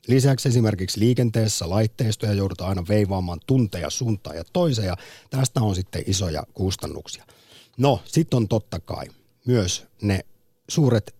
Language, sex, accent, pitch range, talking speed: Finnish, male, native, 90-125 Hz, 130 wpm